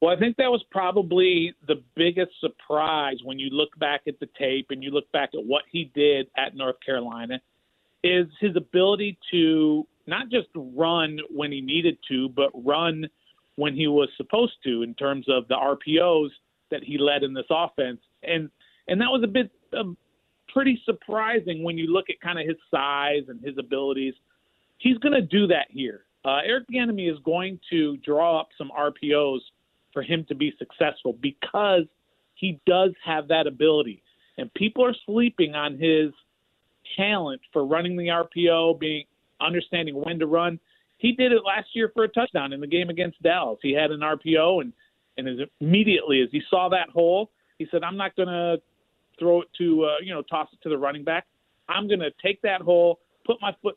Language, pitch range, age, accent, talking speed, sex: English, 145-185 Hz, 40-59, American, 190 wpm, male